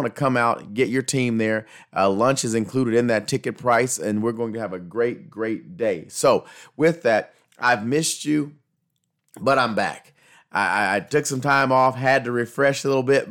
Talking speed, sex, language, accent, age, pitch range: 205 wpm, male, English, American, 30-49, 110-140 Hz